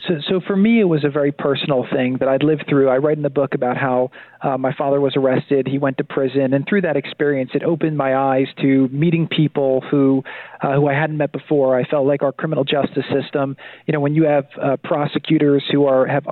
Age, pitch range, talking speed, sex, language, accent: 40-59, 140-160 Hz, 240 wpm, male, English, American